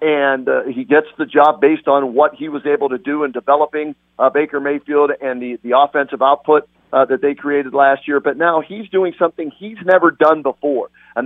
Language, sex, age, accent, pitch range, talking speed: English, male, 40-59, American, 140-160 Hz, 215 wpm